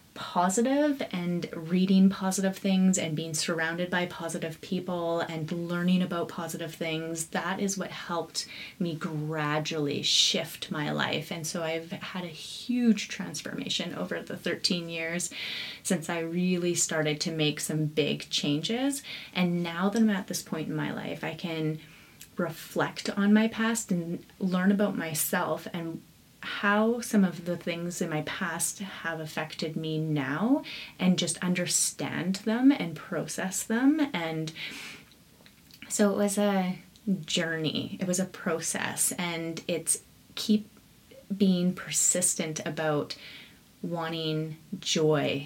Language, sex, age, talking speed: English, female, 30-49, 135 wpm